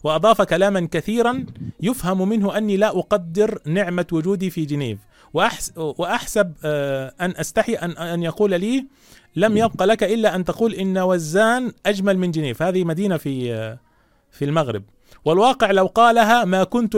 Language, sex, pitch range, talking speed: Arabic, male, 155-205 Hz, 140 wpm